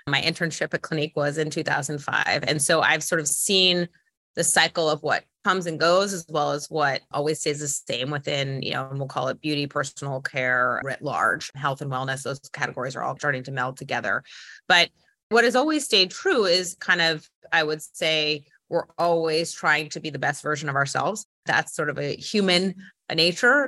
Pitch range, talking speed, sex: 145-190 Hz, 200 wpm, female